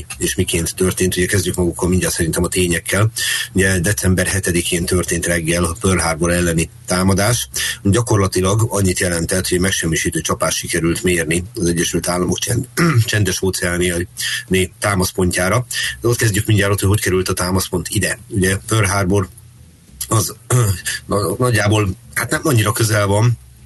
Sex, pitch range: male, 90-105 Hz